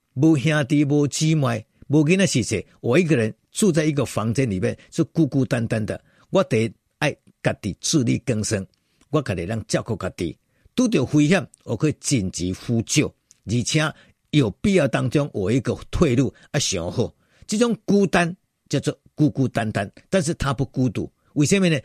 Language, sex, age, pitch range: Chinese, male, 50-69, 115-180 Hz